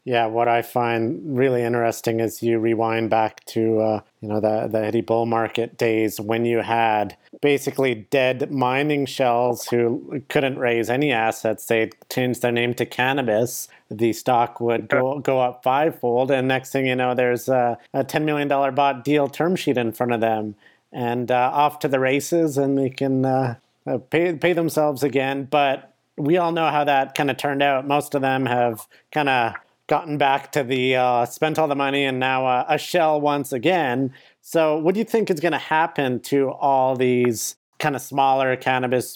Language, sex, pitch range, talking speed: English, male, 120-140 Hz, 190 wpm